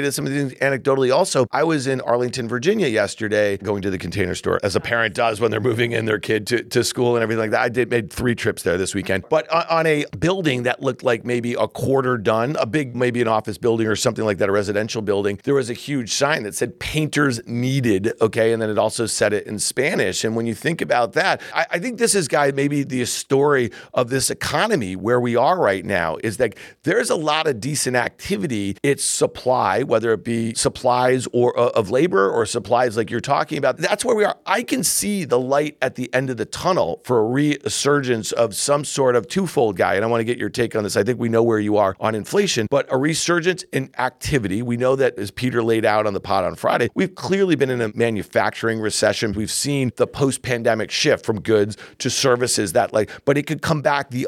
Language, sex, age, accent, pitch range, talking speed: English, male, 50-69, American, 110-140 Hz, 235 wpm